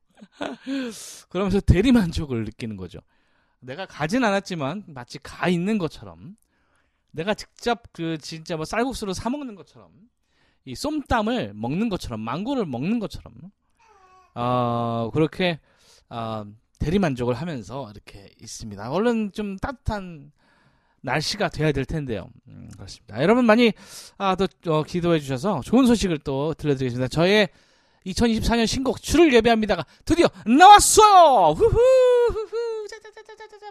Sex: male